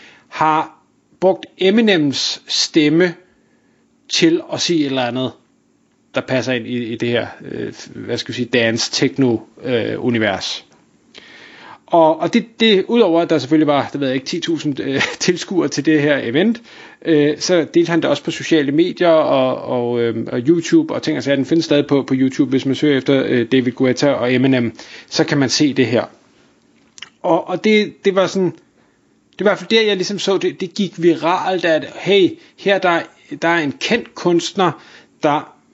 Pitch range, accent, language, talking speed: 140-190 Hz, native, Danish, 170 wpm